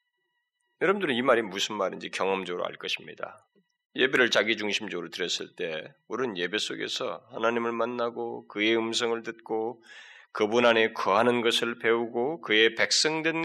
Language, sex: Korean, male